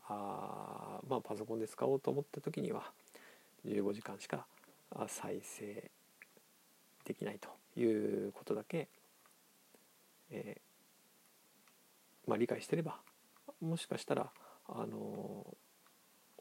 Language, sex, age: Japanese, male, 40-59